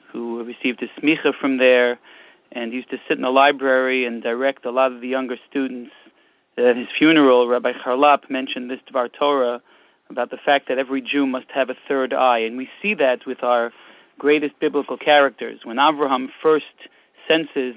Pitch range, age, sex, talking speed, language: 125-155 Hz, 40-59, male, 185 wpm, English